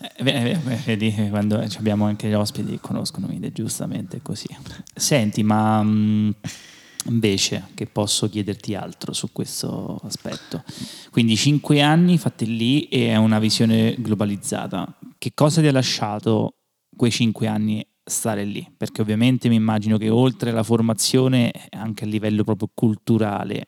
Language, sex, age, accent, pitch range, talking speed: Italian, male, 20-39, native, 105-115 Hz, 145 wpm